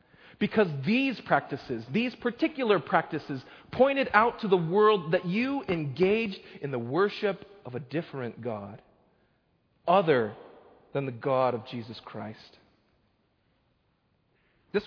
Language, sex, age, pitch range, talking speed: English, male, 40-59, 155-225 Hz, 115 wpm